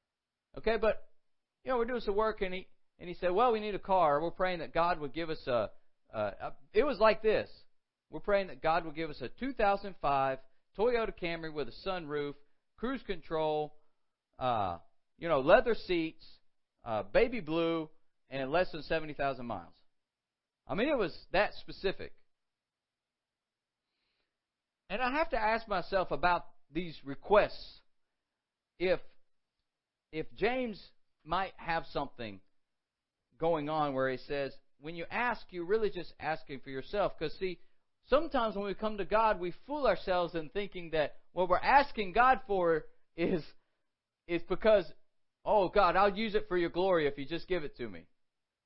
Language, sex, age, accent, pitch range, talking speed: English, male, 50-69, American, 155-215 Hz, 165 wpm